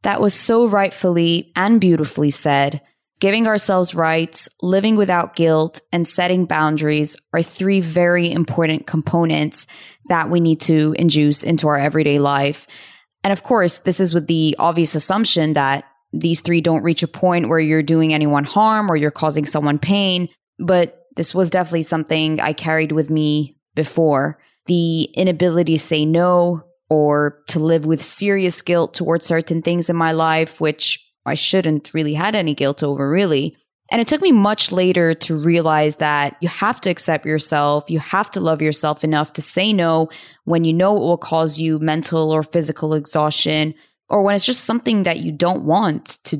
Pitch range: 155-180 Hz